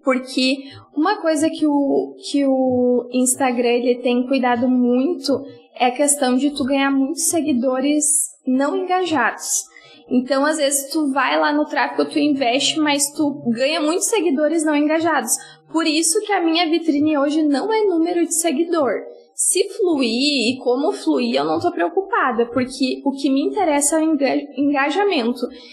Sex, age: female, 10-29